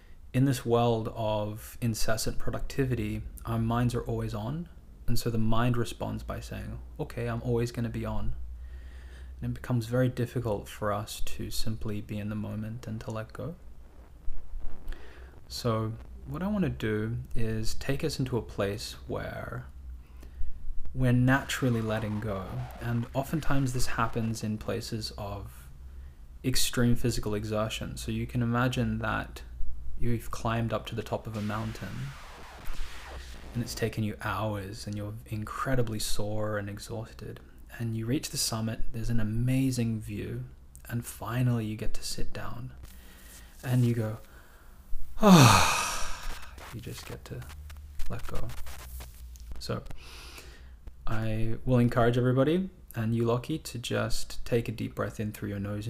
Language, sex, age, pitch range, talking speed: English, male, 20-39, 70-120 Hz, 150 wpm